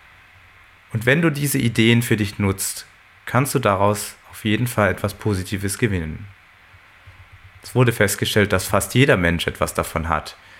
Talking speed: 155 wpm